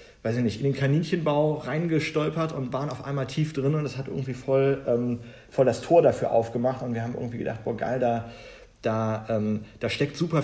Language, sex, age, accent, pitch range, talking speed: German, male, 40-59, German, 110-140 Hz, 215 wpm